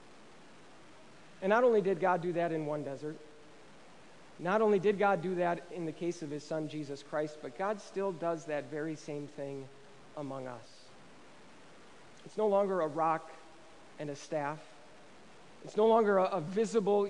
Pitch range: 155-200 Hz